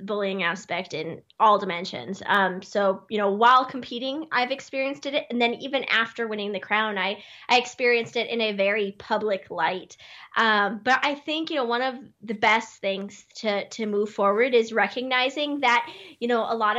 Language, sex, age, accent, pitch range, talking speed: English, female, 20-39, American, 205-255 Hz, 185 wpm